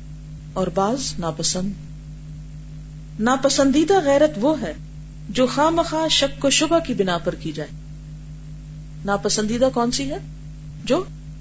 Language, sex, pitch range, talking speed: Urdu, female, 150-225 Hz, 115 wpm